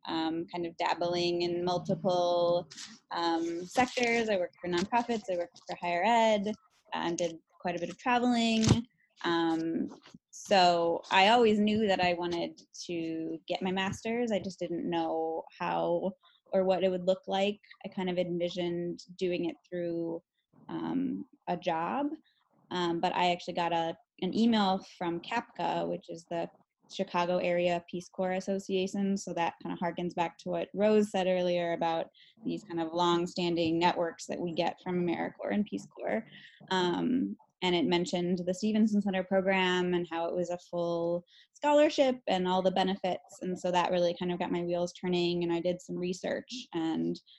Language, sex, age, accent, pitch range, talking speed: English, female, 10-29, American, 175-195 Hz, 170 wpm